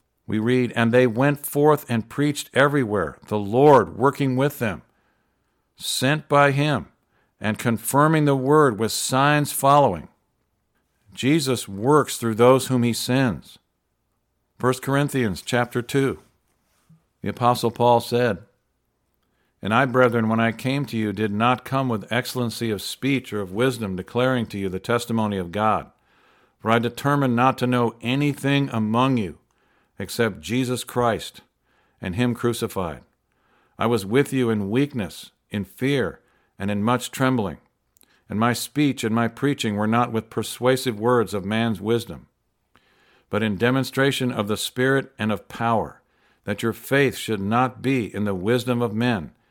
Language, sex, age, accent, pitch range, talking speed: English, male, 50-69, American, 105-130 Hz, 150 wpm